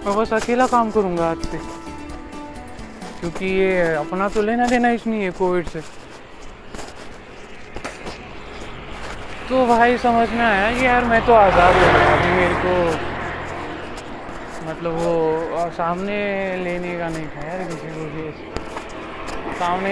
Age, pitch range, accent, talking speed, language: 20-39, 165-215 Hz, native, 65 wpm, Marathi